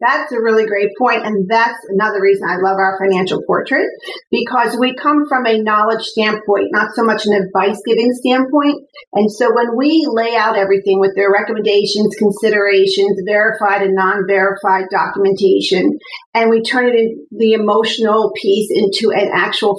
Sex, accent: female, American